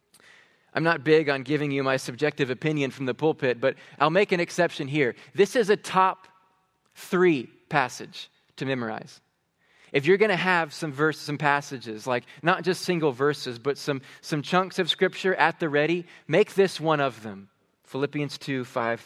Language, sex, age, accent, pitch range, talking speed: English, male, 20-39, American, 140-175 Hz, 180 wpm